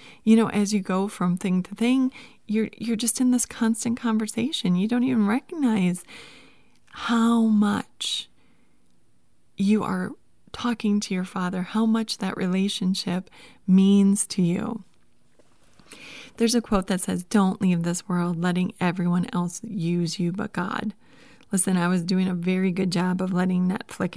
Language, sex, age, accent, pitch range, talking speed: English, female, 30-49, American, 185-225 Hz, 155 wpm